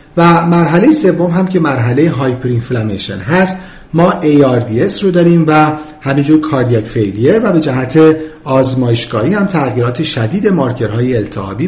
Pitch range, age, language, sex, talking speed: 125-175 Hz, 40-59, Persian, male, 140 wpm